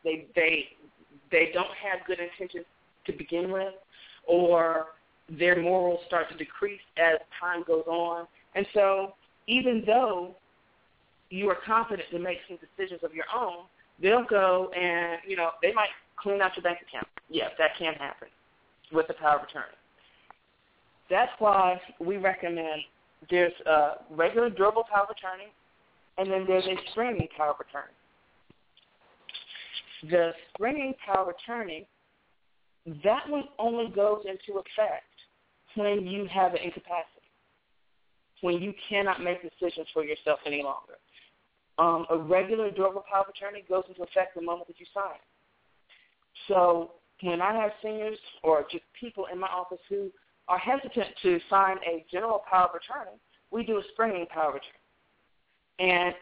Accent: American